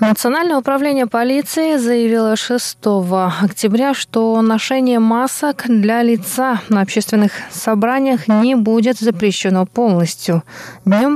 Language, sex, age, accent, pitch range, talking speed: Russian, female, 20-39, native, 200-235 Hz, 100 wpm